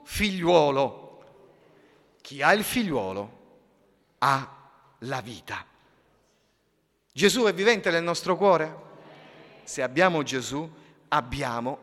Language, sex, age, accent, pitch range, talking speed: Italian, male, 40-59, native, 150-240 Hz, 90 wpm